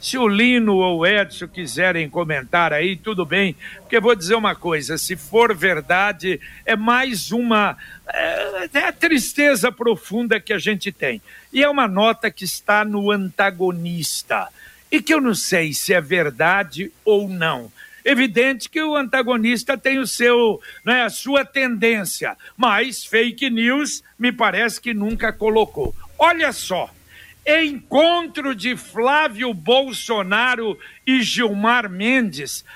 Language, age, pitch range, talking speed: Portuguese, 60-79, 205-260 Hz, 145 wpm